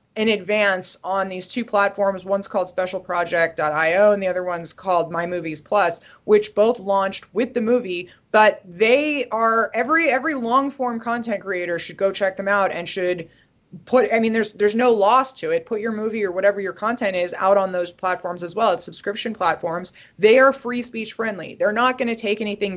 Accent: American